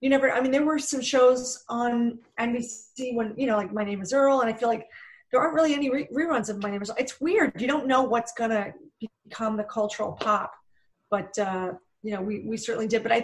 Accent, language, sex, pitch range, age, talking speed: American, English, female, 210-245 Hz, 30-49, 245 wpm